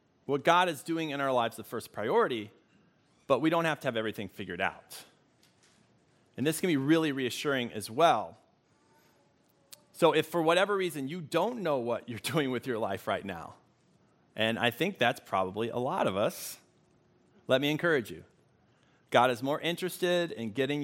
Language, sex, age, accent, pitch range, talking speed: English, male, 40-59, American, 110-145 Hz, 180 wpm